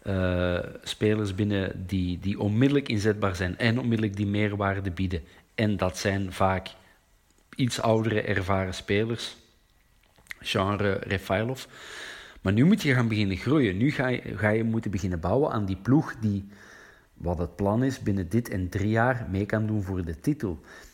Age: 50-69